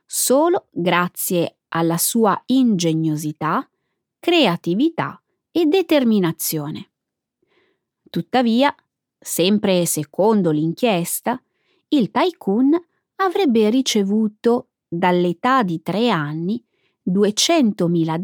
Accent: native